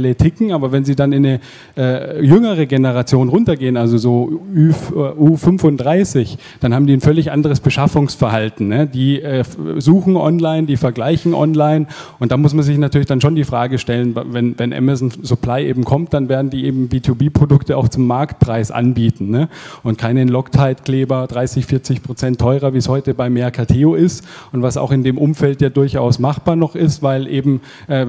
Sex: male